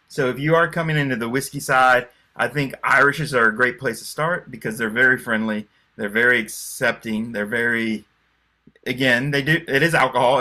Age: 30-49